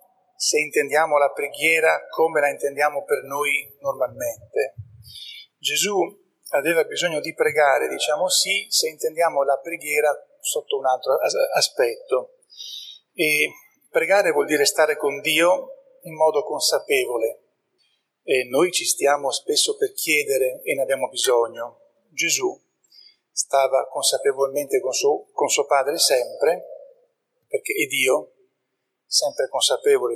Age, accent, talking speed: 40-59, native, 120 wpm